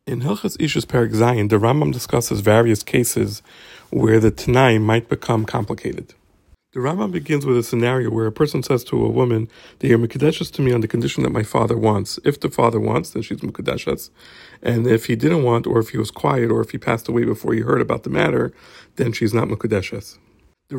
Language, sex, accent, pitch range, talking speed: English, male, American, 110-130 Hz, 210 wpm